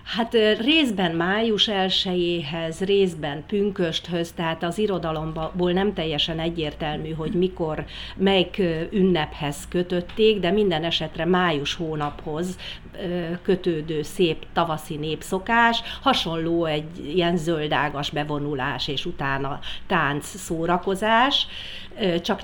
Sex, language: female, Hungarian